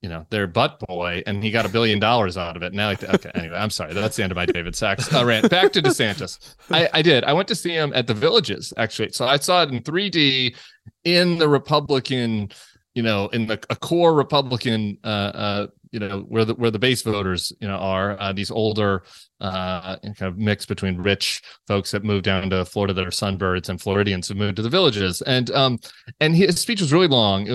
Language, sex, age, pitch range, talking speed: English, male, 30-49, 105-150 Hz, 230 wpm